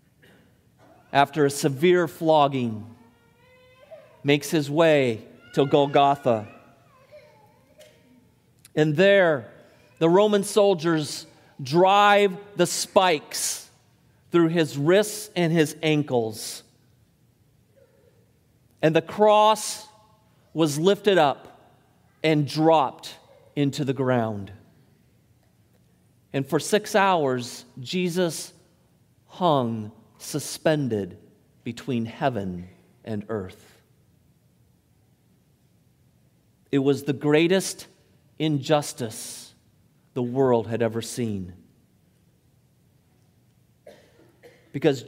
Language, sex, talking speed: English, male, 75 wpm